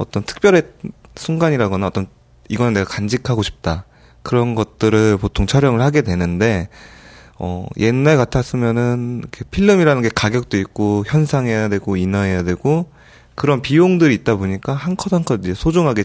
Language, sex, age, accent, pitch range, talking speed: English, male, 20-39, Korean, 95-140 Hz, 125 wpm